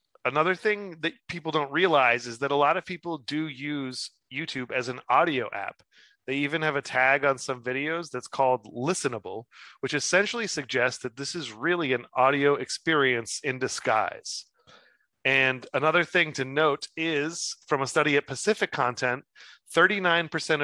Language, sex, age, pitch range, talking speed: English, male, 30-49, 125-150 Hz, 160 wpm